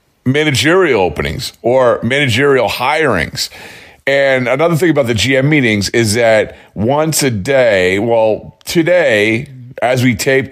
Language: English